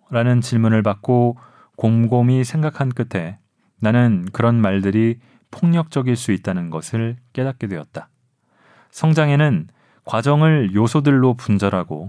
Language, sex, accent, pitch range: Korean, male, native, 105-130 Hz